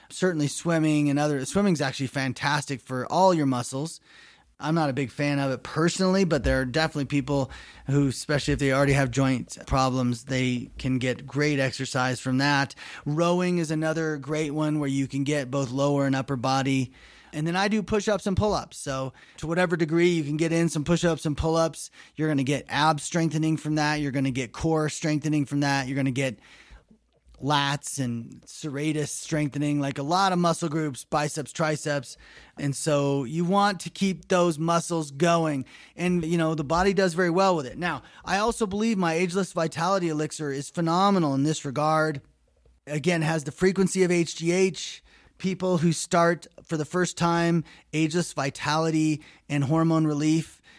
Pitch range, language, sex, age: 140-170 Hz, English, male, 20-39